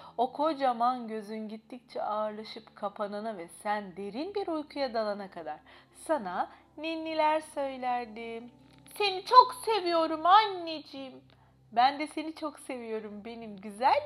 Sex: female